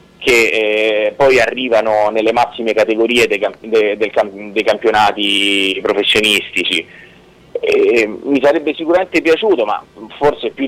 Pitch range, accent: 115-175 Hz, native